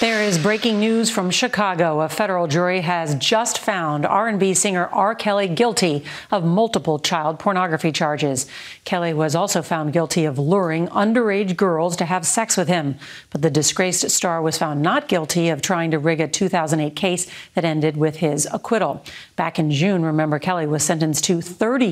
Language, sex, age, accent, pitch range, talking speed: English, female, 40-59, American, 160-205 Hz, 180 wpm